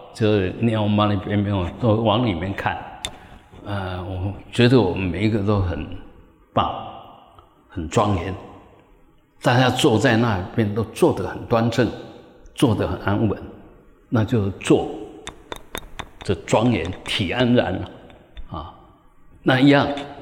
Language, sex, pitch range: Chinese, male, 105-135 Hz